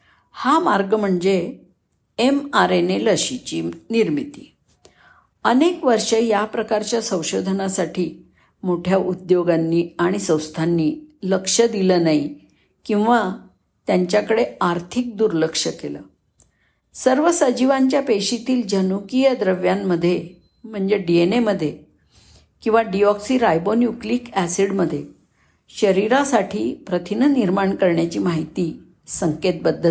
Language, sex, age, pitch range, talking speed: Marathi, female, 50-69, 180-245 Hz, 85 wpm